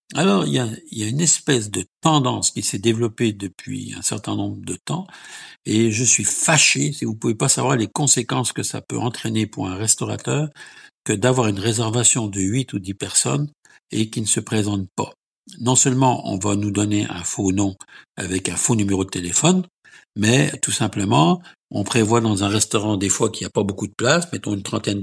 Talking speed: 215 wpm